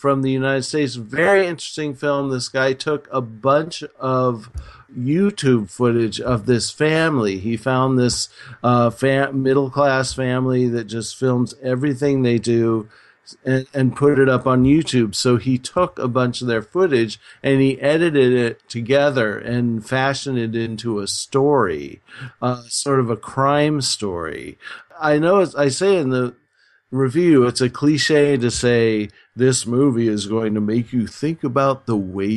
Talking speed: 160 wpm